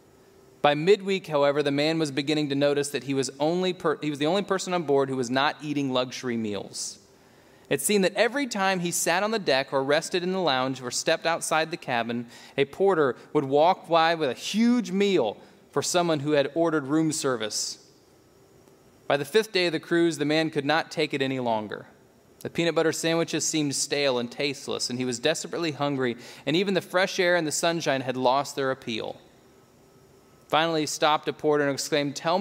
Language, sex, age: English, male, 30-49